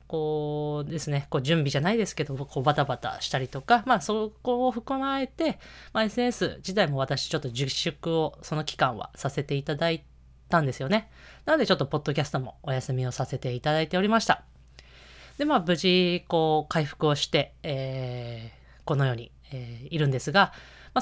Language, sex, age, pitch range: Japanese, female, 20-39, 130-185 Hz